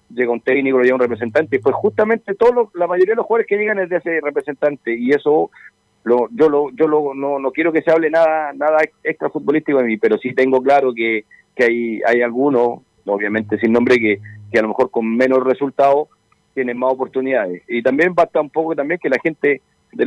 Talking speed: 220 wpm